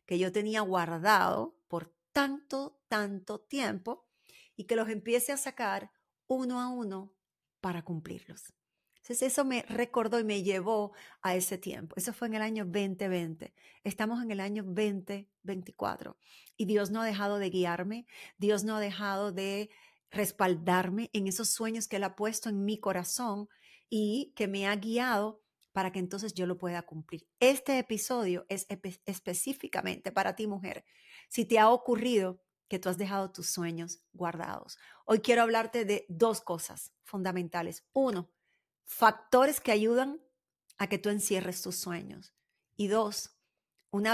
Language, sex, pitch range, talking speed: Spanish, female, 185-230 Hz, 155 wpm